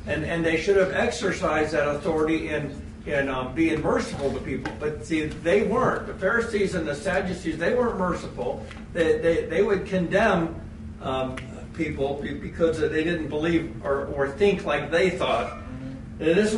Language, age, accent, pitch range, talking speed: English, 60-79, American, 170-225 Hz, 170 wpm